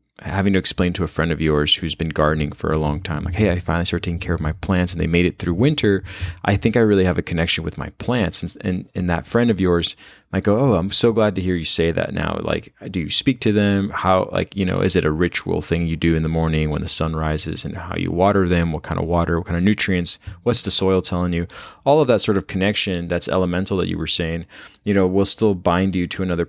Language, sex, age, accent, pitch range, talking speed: English, male, 20-39, American, 85-100 Hz, 275 wpm